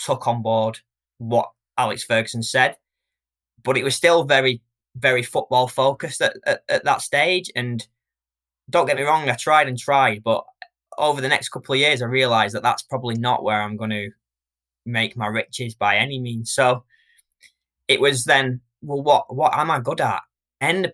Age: 20-39